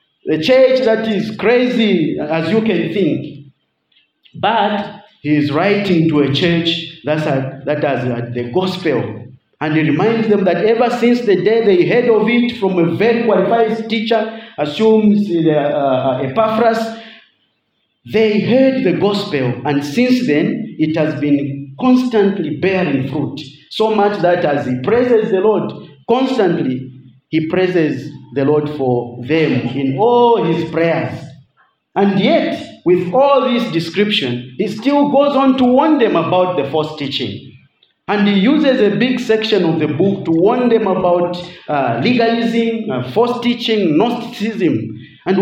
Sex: male